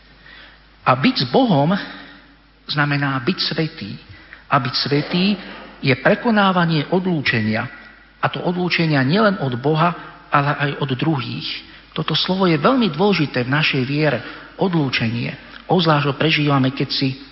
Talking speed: 130 wpm